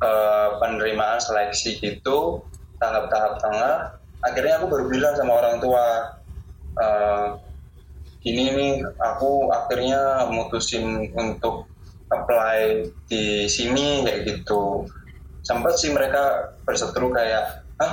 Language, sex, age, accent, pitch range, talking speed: Indonesian, male, 20-39, native, 105-125 Hz, 105 wpm